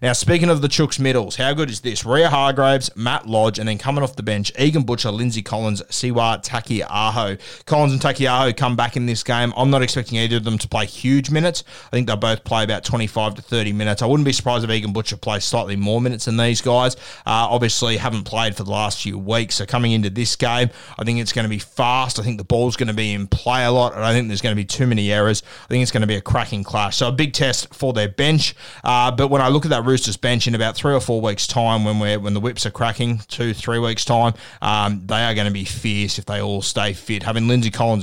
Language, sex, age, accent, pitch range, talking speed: English, male, 20-39, Australian, 105-125 Hz, 265 wpm